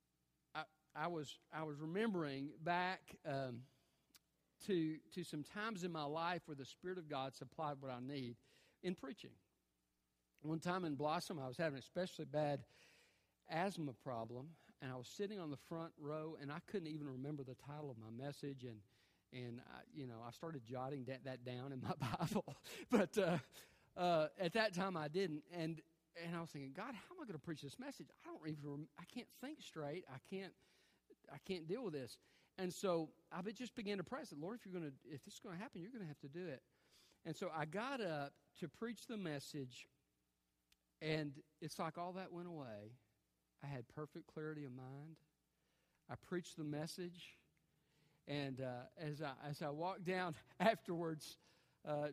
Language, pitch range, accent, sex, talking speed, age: English, 140-180 Hz, American, male, 190 wpm, 50-69